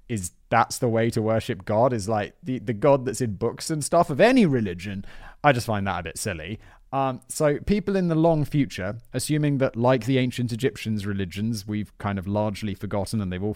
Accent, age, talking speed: British, 30-49, 215 wpm